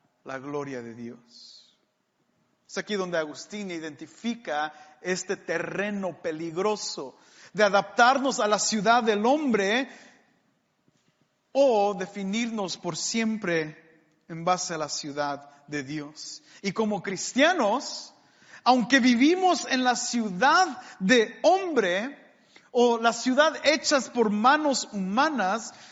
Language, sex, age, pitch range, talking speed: English, male, 40-59, 175-235 Hz, 110 wpm